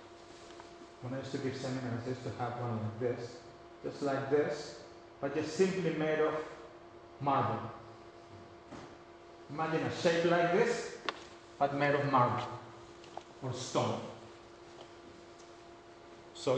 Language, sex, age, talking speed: English, male, 30-49, 120 wpm